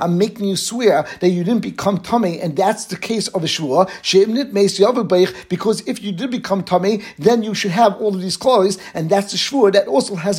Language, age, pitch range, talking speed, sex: English, 50-69, 185-215 Hz, 215 wpm, male